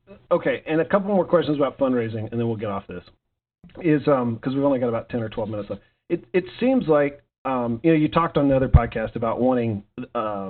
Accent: American